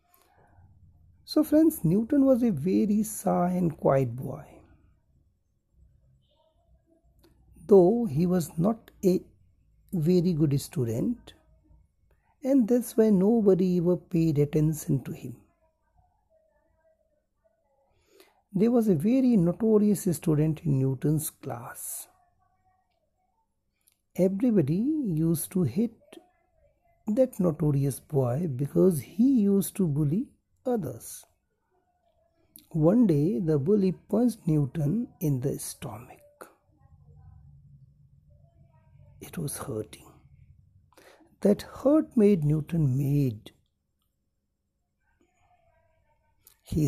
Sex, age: male, 60-79